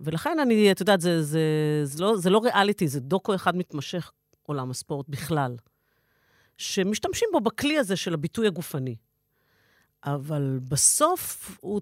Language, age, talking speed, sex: Hebrew, 40-59, 145 wpm, female